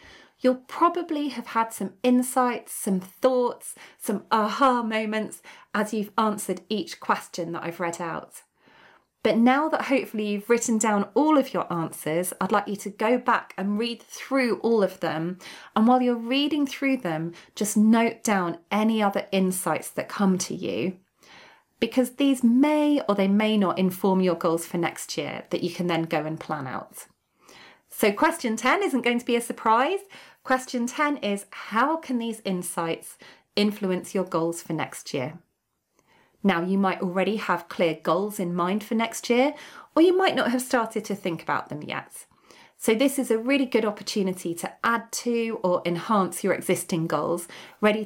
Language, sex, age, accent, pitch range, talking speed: English, female, 30-49, British, 180-240 Hz, 175 wpm